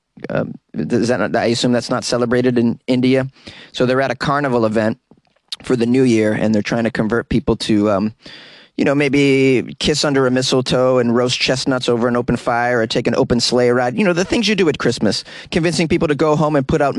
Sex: male